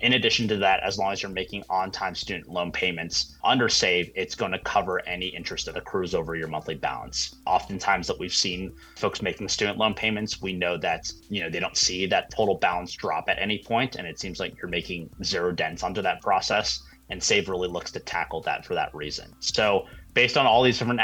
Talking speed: 225 wpm